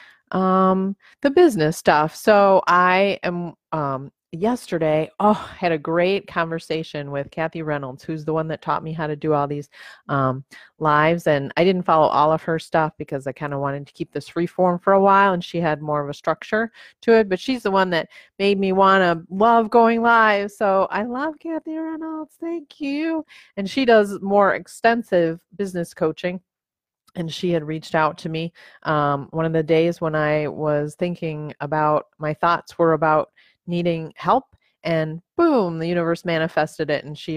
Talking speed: 190 wpm